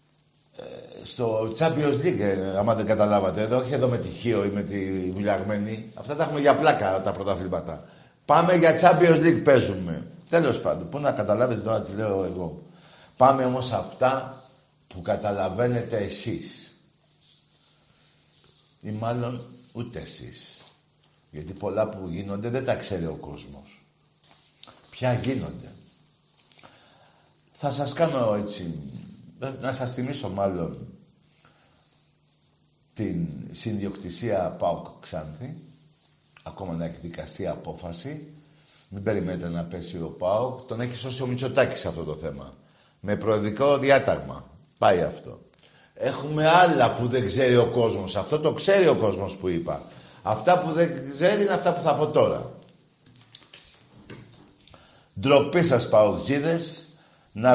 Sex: male